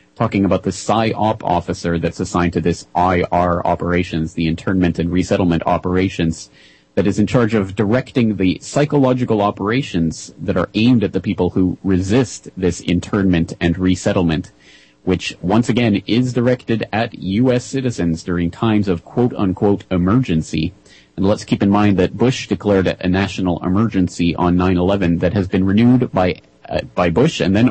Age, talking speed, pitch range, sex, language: 30-49, 155 wpm, 90-110 Hz, male, English